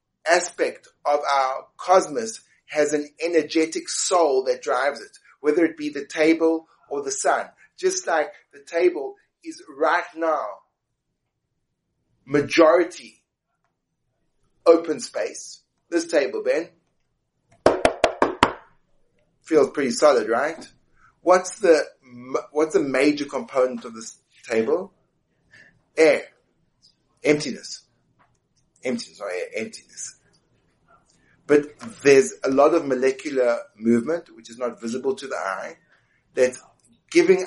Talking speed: 105 wpm